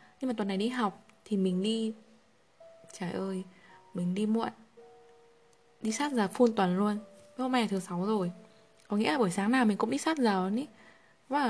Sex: female